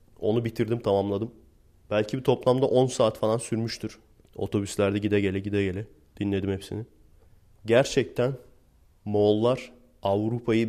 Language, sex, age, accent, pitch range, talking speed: Turkish, male, 30-49, native, 95-115 Hz, 110 wpm